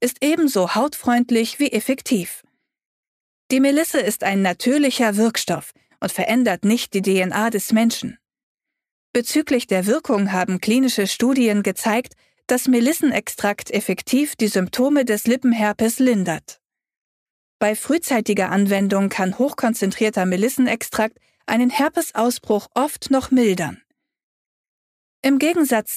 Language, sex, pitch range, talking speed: German, female, 200-260 Hz, 105 wpm